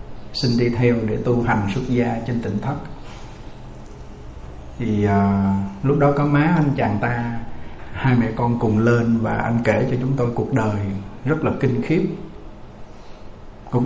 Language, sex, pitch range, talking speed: Vietnamese, male, 105-130 Hz, 165 wpm